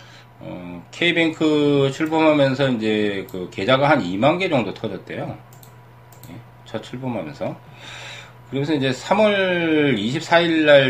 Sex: male